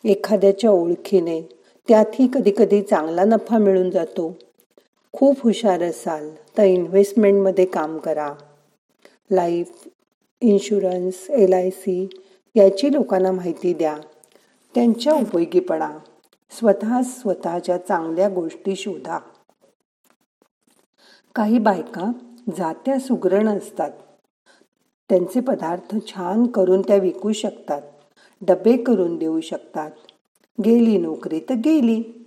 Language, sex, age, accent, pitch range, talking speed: Marathi, female, 50-69, native, 175-230 Hz, 90 wpm